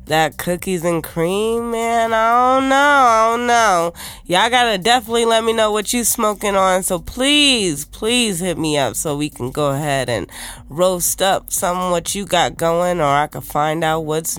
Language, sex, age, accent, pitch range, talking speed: English, female, 20-39, American, 155-225 Hz, 190 wpm